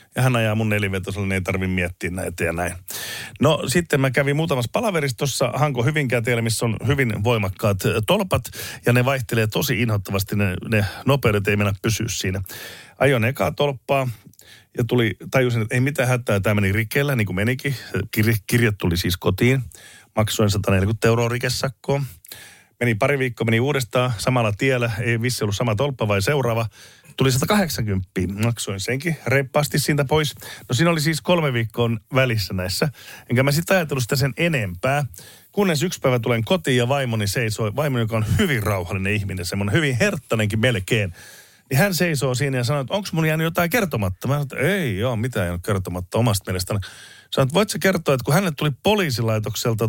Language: Finnish